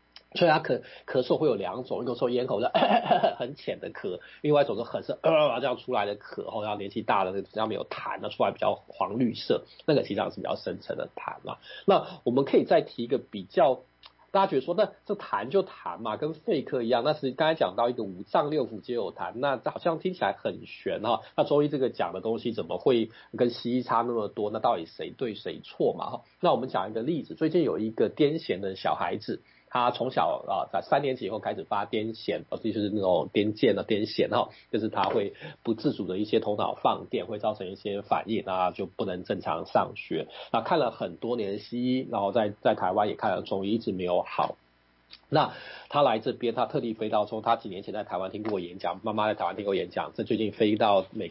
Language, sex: Chinese, male